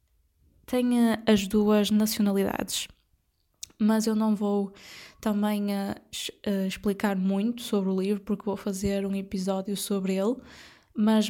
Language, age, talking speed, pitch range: Portuguese, 10-29, 125 wpm, 195-215 Hz